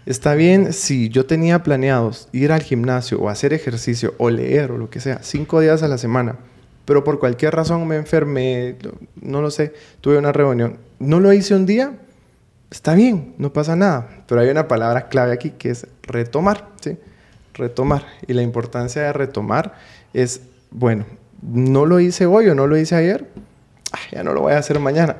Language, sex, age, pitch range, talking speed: Spanish, male, 20-39, 125-170 Hz, 190 wpm